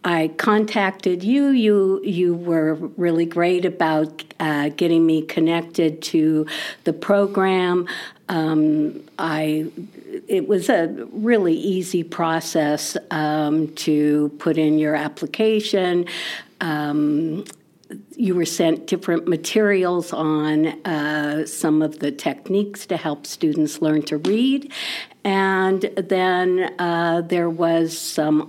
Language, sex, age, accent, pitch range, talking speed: English, female, 60-79, American, 155-190 Hz, 115 wpm